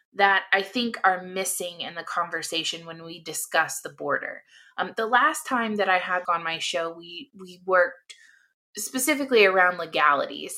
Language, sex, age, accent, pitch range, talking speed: English, female, 20-39, American, 175-215 Hz, 165 wpm